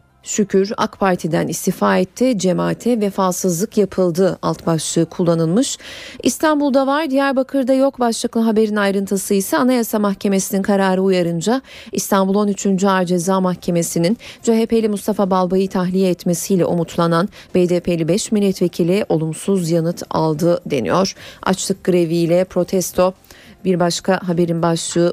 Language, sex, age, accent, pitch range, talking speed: Turkish, female, 40-59, native, 175-220 Hz, 115 wpm